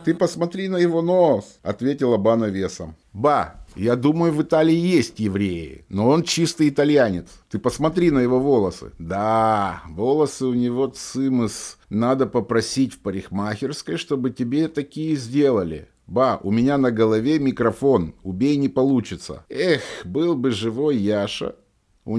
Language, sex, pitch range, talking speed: Russian, male, 100-145 Hz, 145 wpm